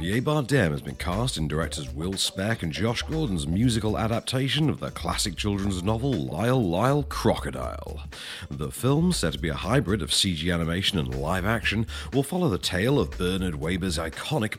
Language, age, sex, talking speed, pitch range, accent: English, 40-59, male, 175 wpm, 80-120 Hz, British